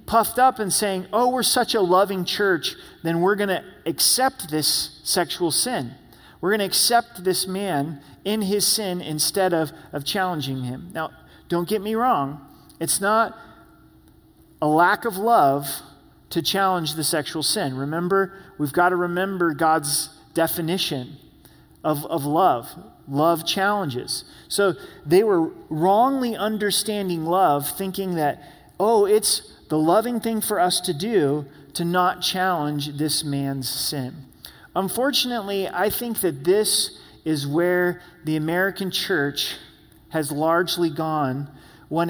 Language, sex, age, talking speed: English, male, 40-59, 140 wpm